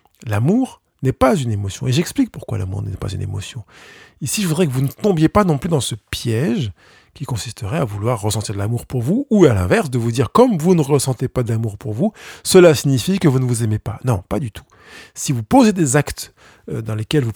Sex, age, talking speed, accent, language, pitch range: male, 50-69, 250 wpm, French, French, 110-150 Hz